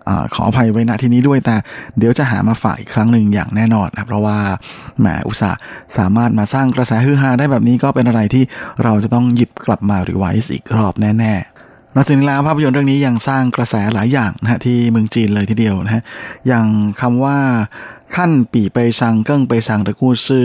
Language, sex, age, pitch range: Thai, male, 20-39, 110-125 Hz